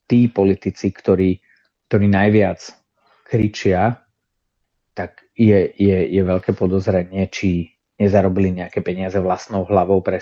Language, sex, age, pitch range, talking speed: Slovak, male, 30-49, 90-105 Hz, 110 wpm